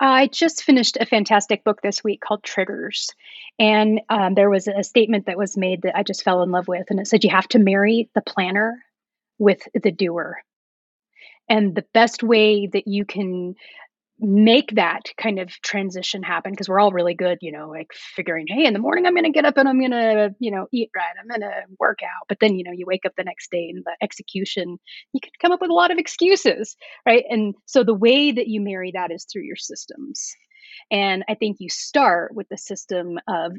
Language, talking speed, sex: English, 225 wpm, female